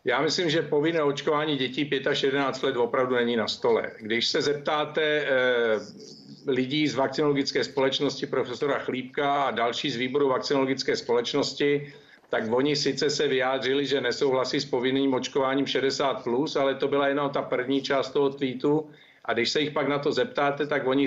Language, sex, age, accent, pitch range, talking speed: Czech, male, 50-69, native, 135-145 Hz, 175 wpm